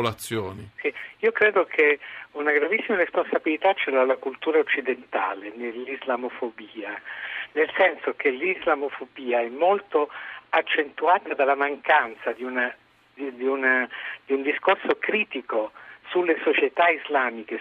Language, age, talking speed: Italian, 50-69, 95 wpm